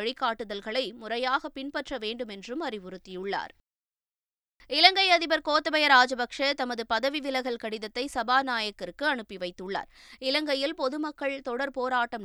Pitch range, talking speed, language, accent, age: 225-275 Hz, 105 wpm, Tamil, native, 20-39